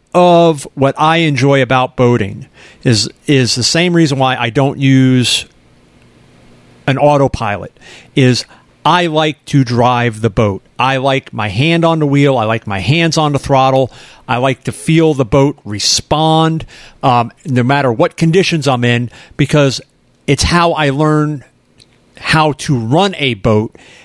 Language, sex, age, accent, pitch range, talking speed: English, male, 40-59, American, 125-160 Hz, 155 wpm